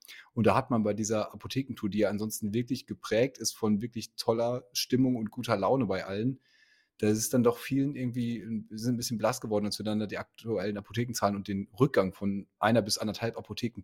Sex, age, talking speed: male, 30-49, 215 wpm